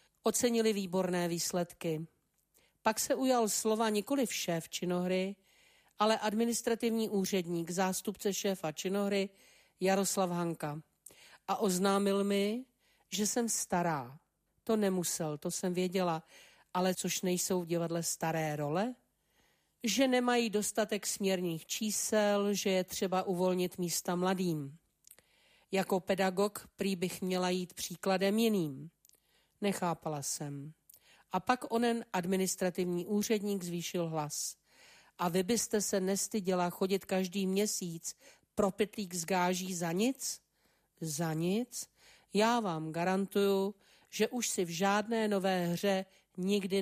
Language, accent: Czech, native